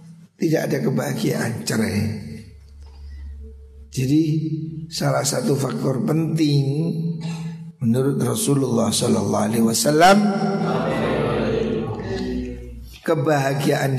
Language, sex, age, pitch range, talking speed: Indonesian, male, 60-79, 125-165 Hz, 65 wpm